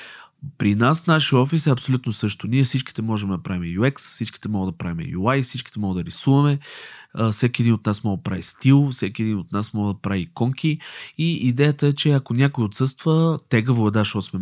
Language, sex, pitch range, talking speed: Bulgarian, male, 105-135 Hz, 205 wpm